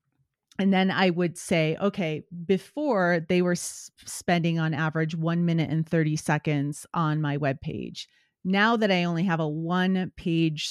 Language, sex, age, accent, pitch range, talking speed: English, female, 30-49, American, 155-195 Hz, 170 wpm